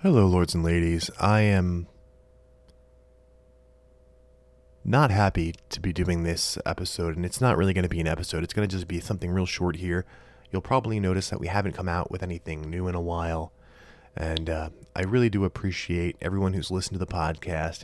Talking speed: 190 wpm